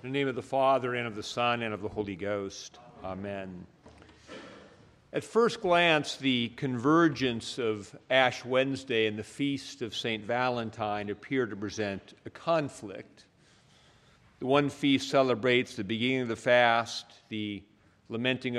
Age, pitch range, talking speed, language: 50-69, 110-140 Hz, 150 wpm, English